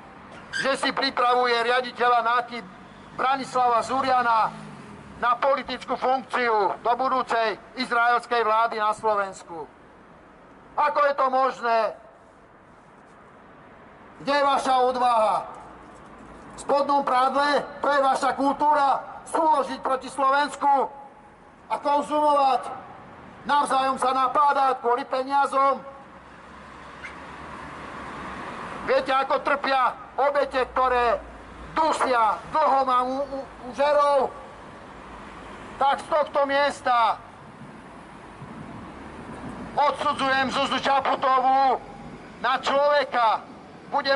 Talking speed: 80 wpm